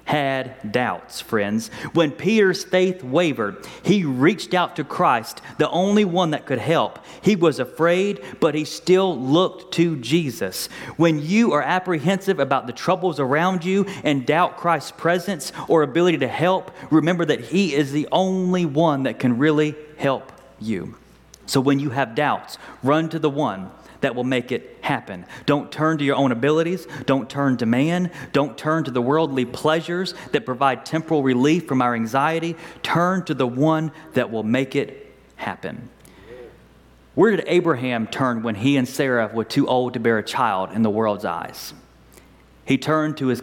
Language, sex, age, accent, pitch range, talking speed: English, male, 30-49, American, 125-165 Hz, 175 wpm